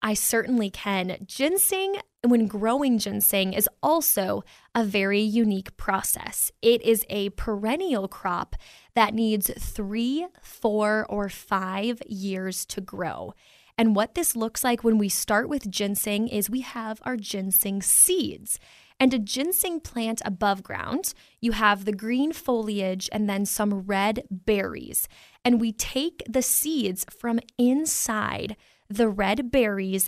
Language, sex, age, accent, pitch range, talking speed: English, female, 10-29, American, 205-250 Hz, 140 wpm